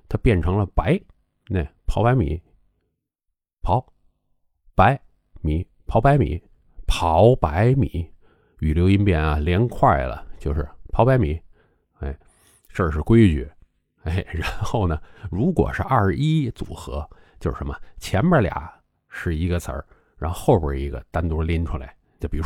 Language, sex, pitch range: Chinese, male, 80-115 Hz